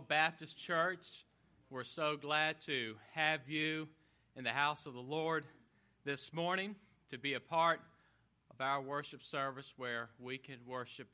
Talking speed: 150 wpm